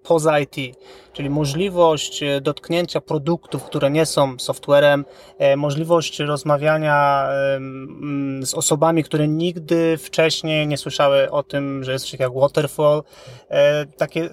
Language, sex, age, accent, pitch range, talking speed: Polish, male, 20-39, native, 145-170 Hz, 110 wpm